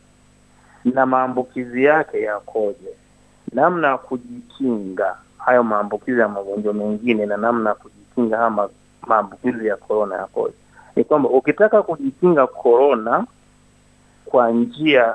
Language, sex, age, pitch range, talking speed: Swahili, male, 30-49, 120-165 Hz, 110 wpm